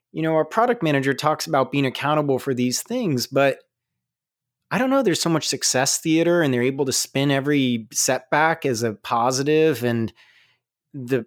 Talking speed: 175 wpm